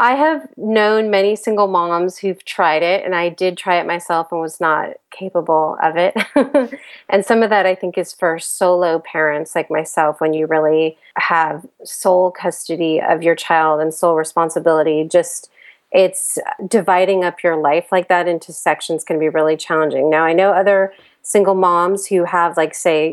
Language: English